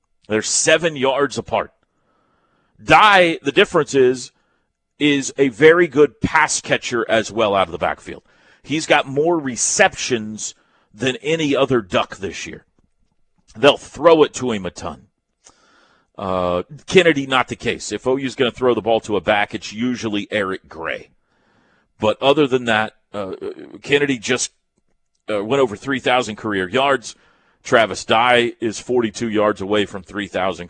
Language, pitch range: English, 110-145 Hz